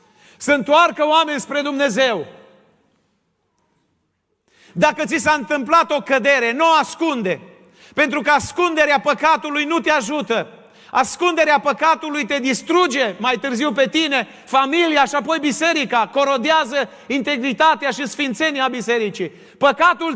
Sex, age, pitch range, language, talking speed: male, 40-59, 185-295 Hz, Romanian, 115 wpm